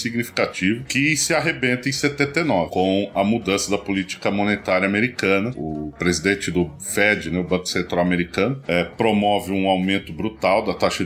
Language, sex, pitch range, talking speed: Portuguese, male, 90-115 Hz, 155 wpm